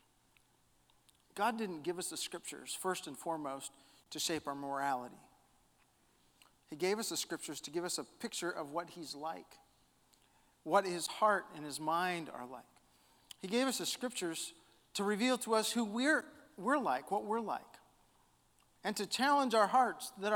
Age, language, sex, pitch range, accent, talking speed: 40-59, English, male, 160-210 Hz, American, 170 wpm